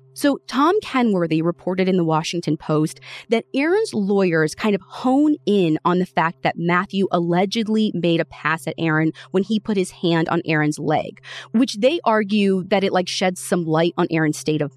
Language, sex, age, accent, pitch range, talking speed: English, female, 20-39, American, 160-215 Hz, 190 wpm